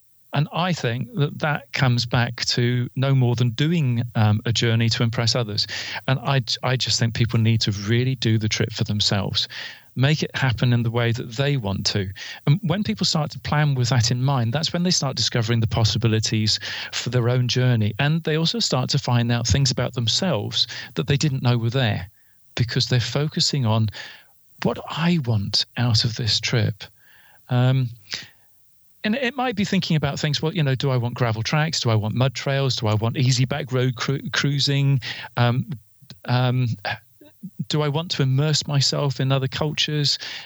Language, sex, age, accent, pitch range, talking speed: English, male, 40-59, British, 115-145 Hz, 190 wpm